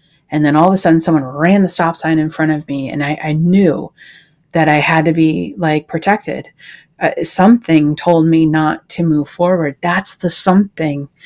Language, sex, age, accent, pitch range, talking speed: English, female, 30-49, American, 160-195 Hz, 195 wpm